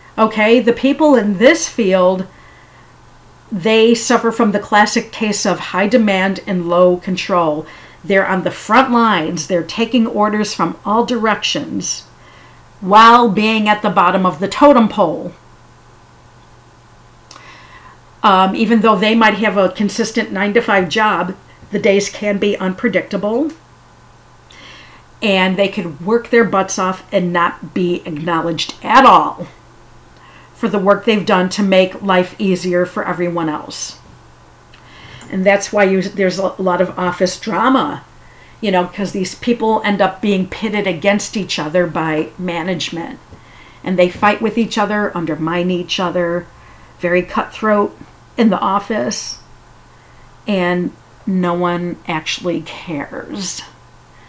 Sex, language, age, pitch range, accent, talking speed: female, English, 50-69, 175-215 Hz, American, 135 wpm